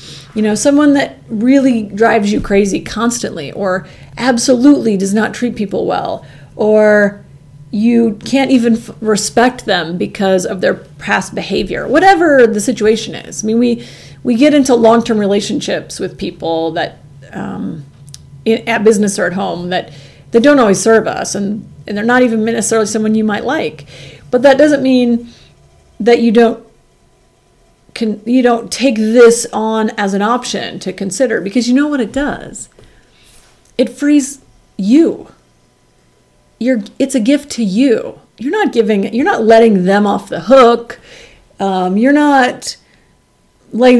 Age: 40-59